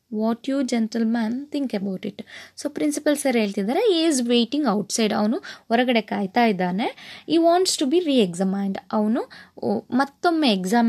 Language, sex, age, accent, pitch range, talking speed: Kannada, female, 20-39, native, 215-310 Hz, 145 wpm